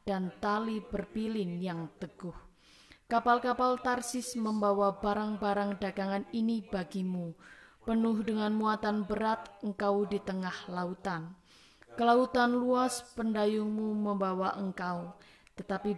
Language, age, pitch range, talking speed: Indonesian, 20-39, 195-230 Hz, 100 wpm